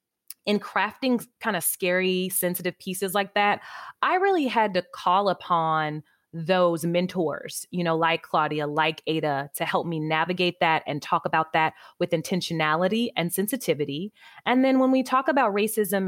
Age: 20-39